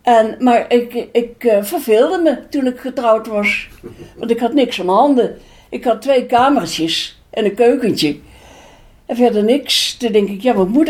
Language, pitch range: Dutch, 165-235 Hz